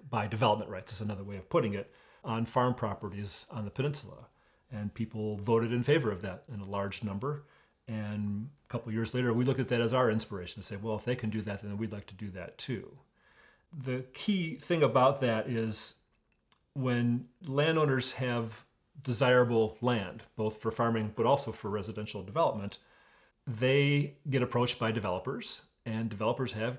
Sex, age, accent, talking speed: male, 40-59, American, 180 wpm